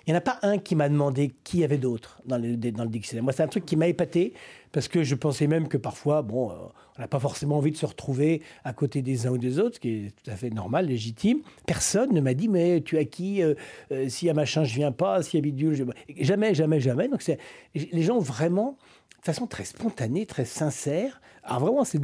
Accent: French